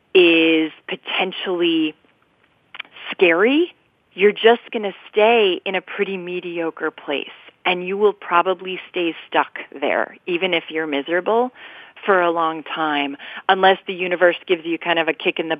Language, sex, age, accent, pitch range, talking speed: English, female, 30-49, American, 165-225 Hz, 150 wpm